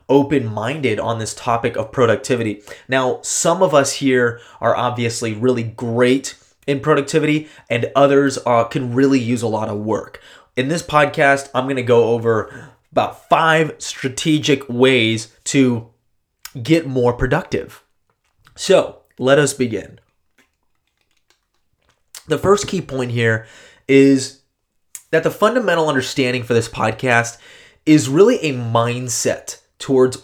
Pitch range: 115-150 Hz